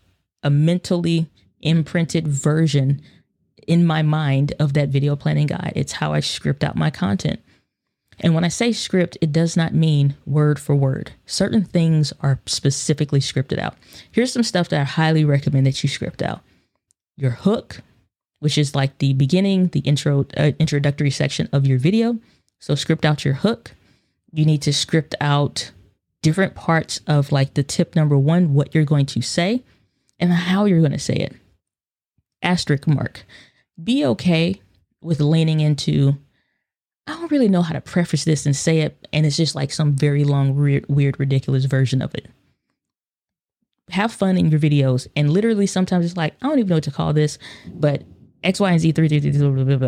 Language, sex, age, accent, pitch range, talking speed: English, female, 20-39, American, 140-175 Hz, 175 wpm